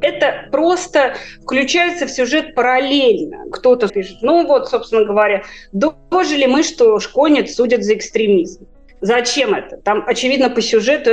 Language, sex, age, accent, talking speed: Russian, female, 20-39, native, 135 wpm